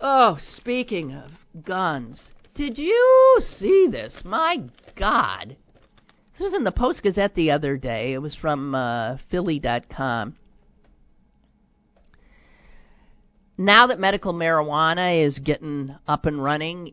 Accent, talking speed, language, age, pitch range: American, 115 wpm, English, 50-69, 135-175 Hz